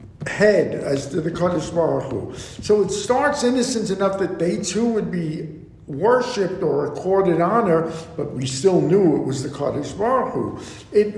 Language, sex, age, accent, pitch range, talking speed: English, male, 60-79, American, 160-210 Hz, 160 wpm